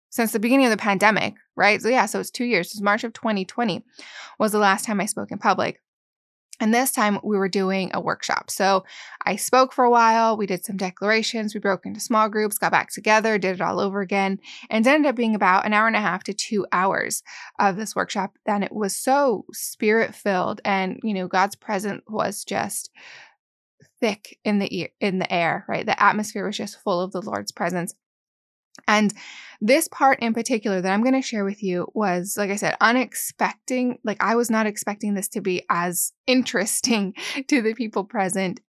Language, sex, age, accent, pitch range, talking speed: English, female, 20-39, American, 195-230 Hz, 210 wpm